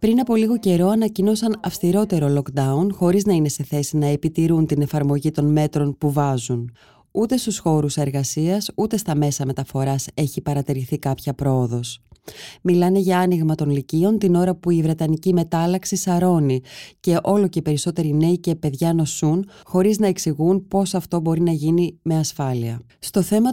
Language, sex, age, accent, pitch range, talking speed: Greek, female, 20-39, native, 150-190 Hz, 165 wpm